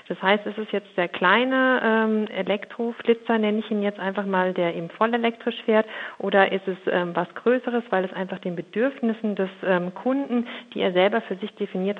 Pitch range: 180-215 Hz